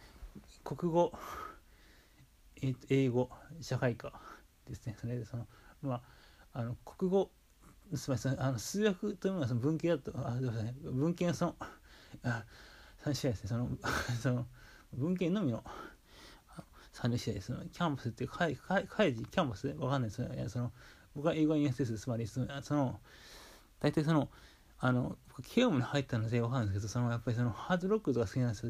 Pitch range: 115-145 Hz